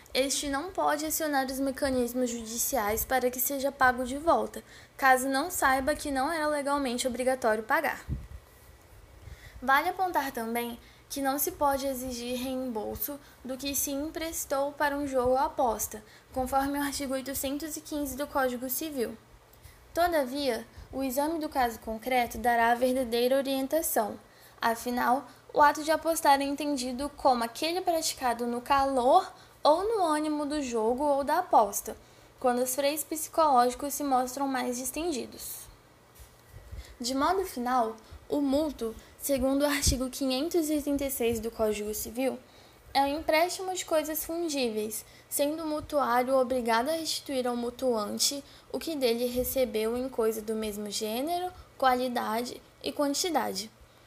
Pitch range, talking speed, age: 245-295 Hz, 140 wpm, 10-29